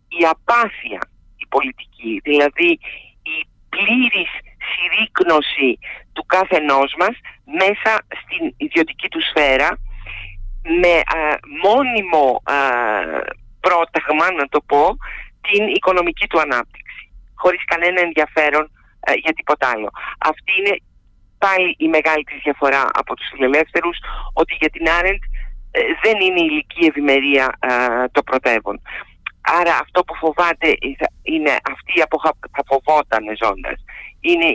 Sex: male